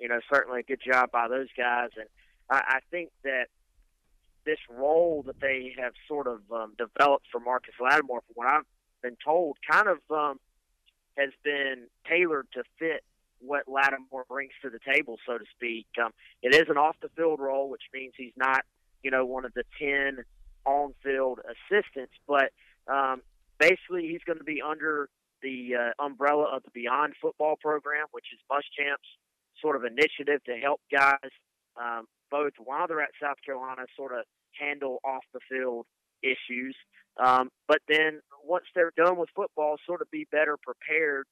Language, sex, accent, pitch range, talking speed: English, male, American, 125-150 Hz, 175 wpm